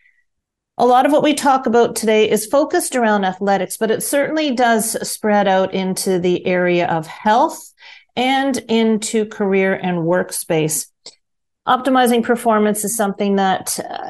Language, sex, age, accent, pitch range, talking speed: English, female, 40-59, American, 180-230 Hz, 140 wpm